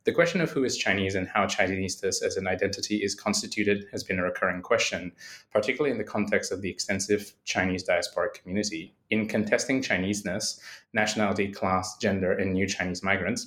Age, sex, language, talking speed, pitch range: 20-39, male, English, 175 wpm, 95-120 Hz